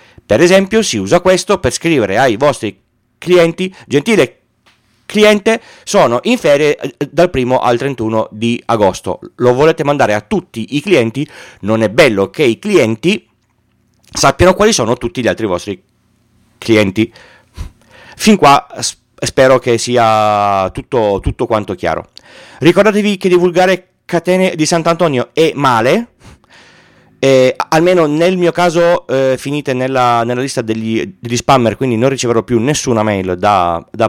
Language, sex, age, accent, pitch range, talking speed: Italian, male, 40-59, native, 110-170 Hz, 145 wpm